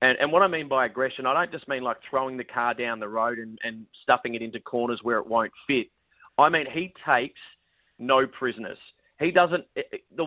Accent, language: Australian, English